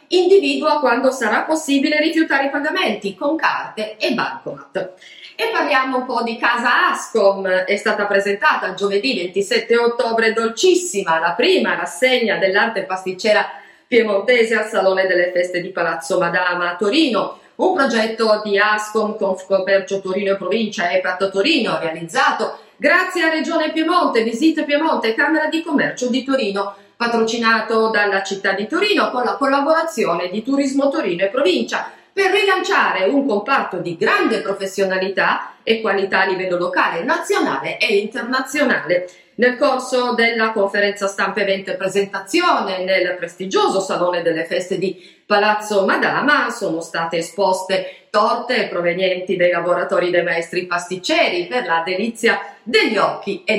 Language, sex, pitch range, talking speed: Italian, female, 190-265 Hz, 140 wpm